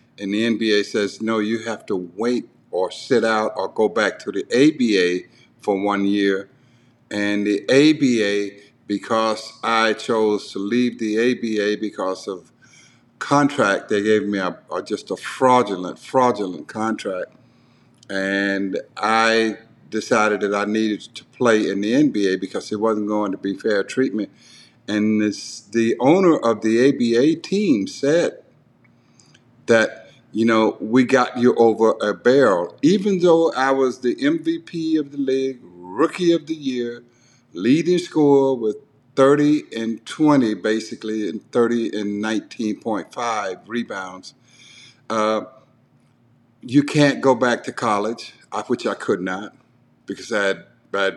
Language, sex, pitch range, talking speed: English, male, 105-130 Hz, 140 wpm